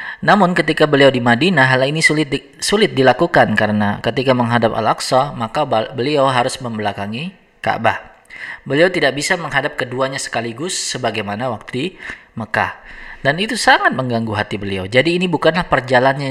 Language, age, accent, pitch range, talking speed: Indonesian, 20-39, native, 110-150 Hz, 145 wpm